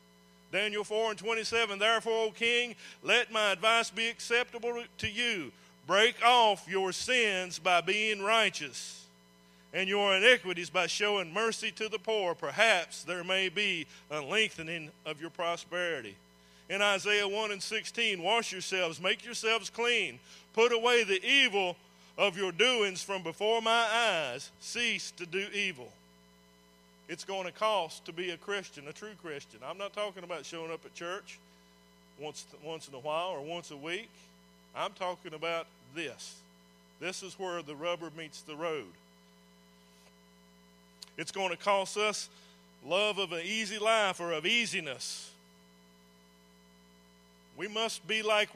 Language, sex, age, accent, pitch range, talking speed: English, male, 50-69, American, 150-215 Hz, 150 wpm